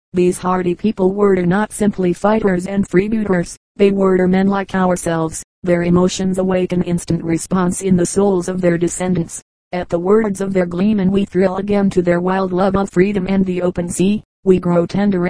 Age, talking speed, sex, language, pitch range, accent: 40-59, 190 wpm, female, English, 180-195 Hz, American